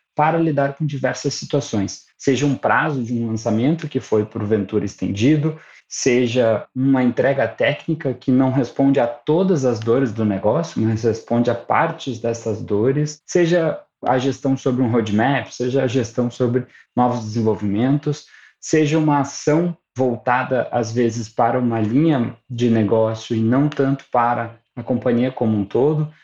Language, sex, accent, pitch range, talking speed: Portuguese, male, Brazilian, 115-150 Hz, 150 wpm